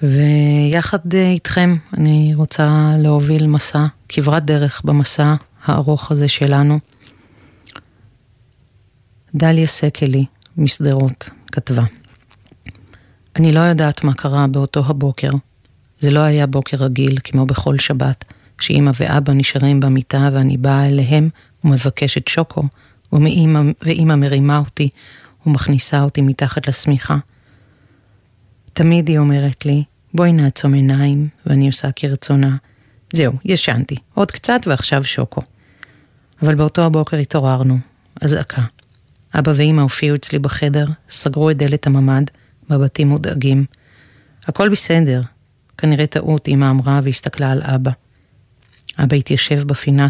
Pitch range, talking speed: 130-150 Hz, 110 wpm